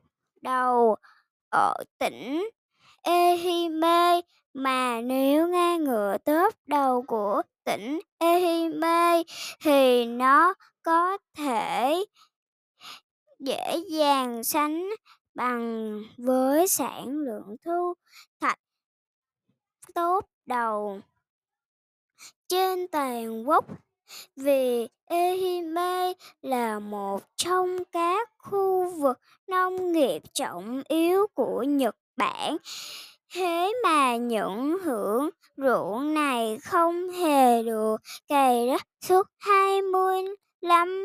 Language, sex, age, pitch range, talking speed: Vietnamese, male, 10-29, 260-360 Hz, 90 wpm